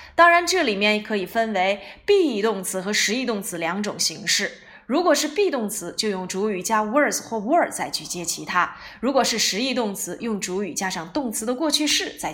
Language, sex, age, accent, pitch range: Chinese, female, 20-39, native, 205-300 Hz